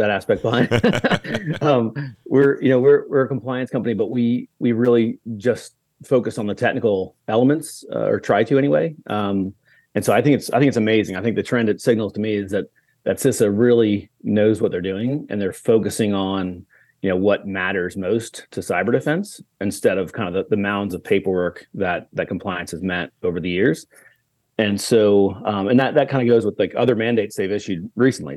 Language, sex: English, male